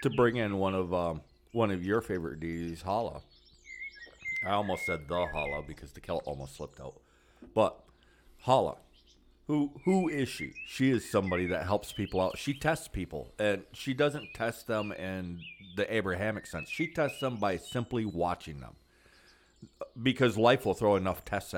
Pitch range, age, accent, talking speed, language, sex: 90-130 Hz, 40-59, American, 170 wpm, English, male